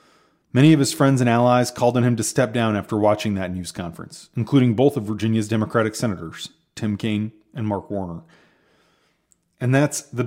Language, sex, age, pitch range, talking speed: English, male, 30-49, 110-140 Hz, 180 wpm